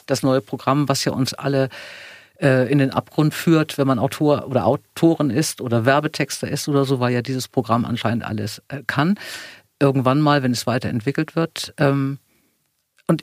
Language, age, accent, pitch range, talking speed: German, 50-69, German, 130-160 Hz, 175 wpm